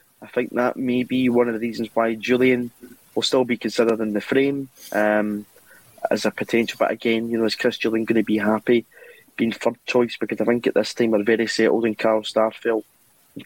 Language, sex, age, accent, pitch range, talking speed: English, male, 20-39, British, 110-125 Hz, 220 wpm